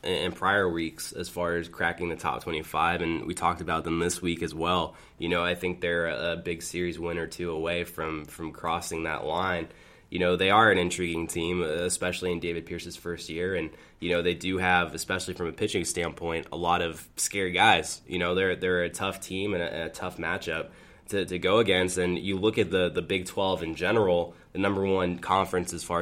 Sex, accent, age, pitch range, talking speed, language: male, American, 20-39, 85-90 Hz, 225 wpm, English